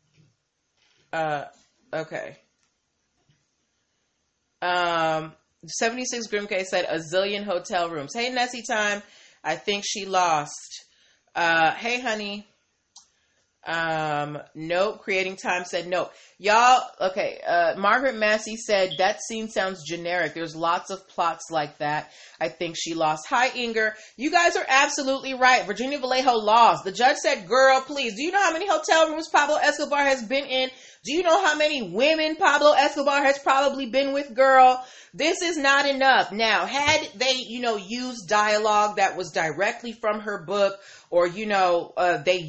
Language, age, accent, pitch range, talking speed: English, 30-49, American, 195-270 Hz, 155 wpm